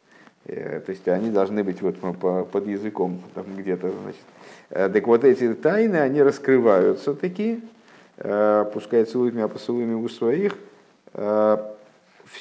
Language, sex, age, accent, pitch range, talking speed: Russian, male, 50-69, native, 90-115 Hz, 120 wpm